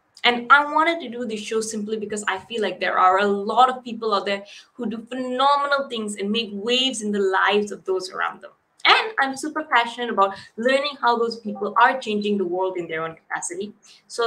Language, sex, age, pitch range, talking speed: English, female, 20-39, 200-255 Hz, 220 wpm